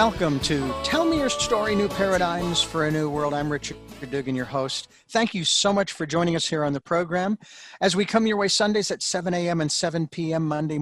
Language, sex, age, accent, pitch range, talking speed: English, male, 50-69, American, 150-205 Hz, 225 wpm